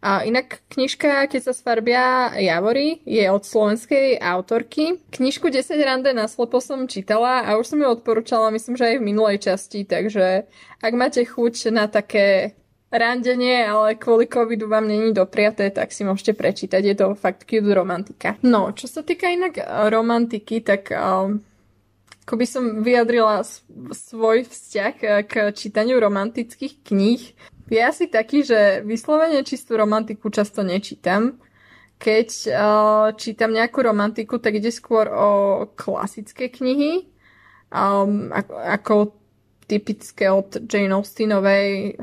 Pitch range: 200-240 Hz